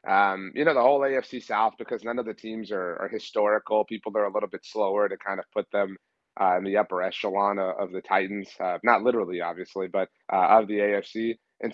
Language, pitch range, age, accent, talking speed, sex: English, 105-125 Hz, 30-49, American, 230 wpm, male